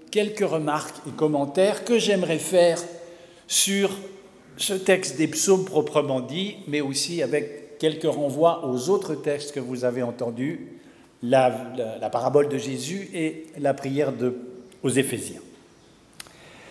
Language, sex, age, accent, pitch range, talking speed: French, male, 60-79, French, 145-220 Hz, 135 wpm